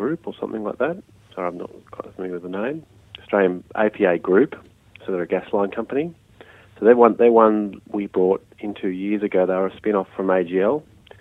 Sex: male